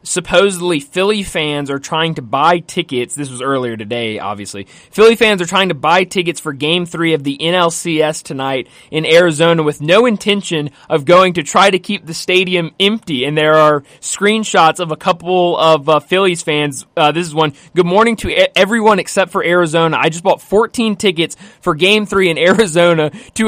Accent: American